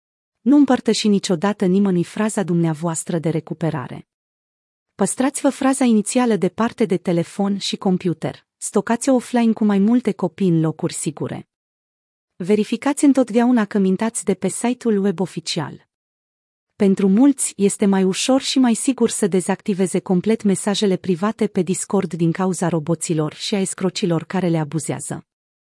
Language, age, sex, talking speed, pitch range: Romanian, 30-49, female, 140 wpm, 175-220 Hz